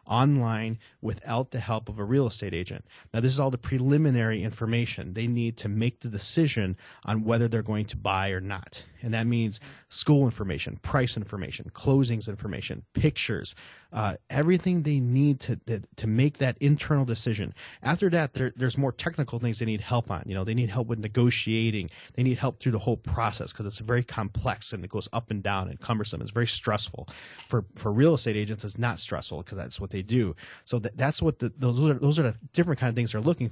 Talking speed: 215 wpm